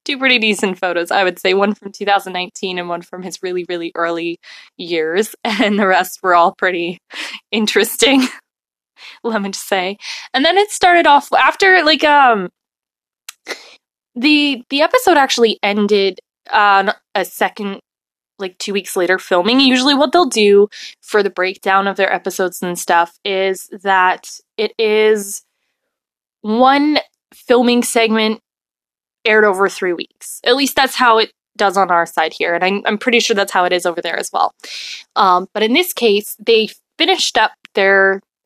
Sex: female